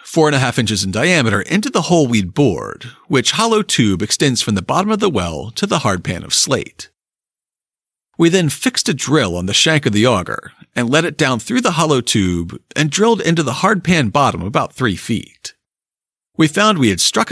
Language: English